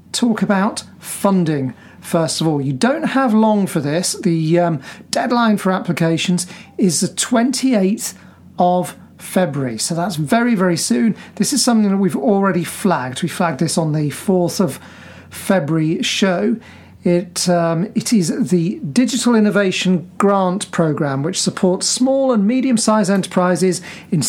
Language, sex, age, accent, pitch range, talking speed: English, male, 40-59, British, 170-210 Hz, 145 wpm